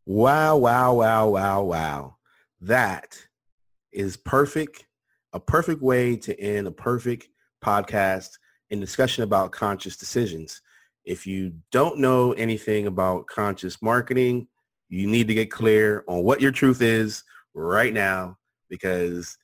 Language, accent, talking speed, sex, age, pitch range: English, American, 130 wpm, male, 30-49, 90-115 Hz